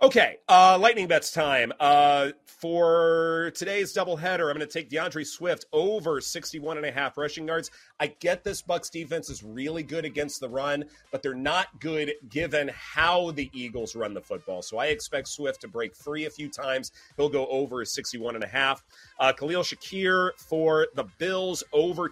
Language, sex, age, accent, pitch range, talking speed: English, male, 30-49, American, 130-165 Hz, 185 wpm